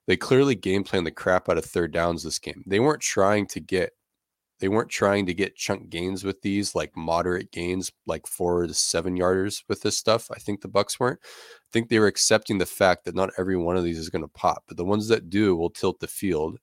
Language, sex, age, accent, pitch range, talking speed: English, male, 20-39, American, 85-100 Hz, 245 wpm